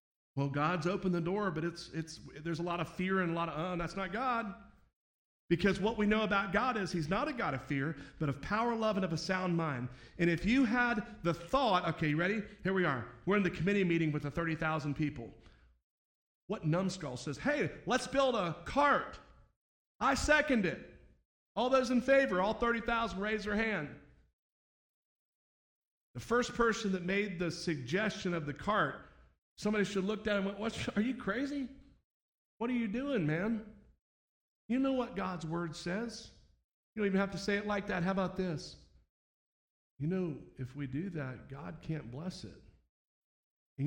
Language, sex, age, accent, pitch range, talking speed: English, male, 40-59, American, 150-210 Hz, 190 wpm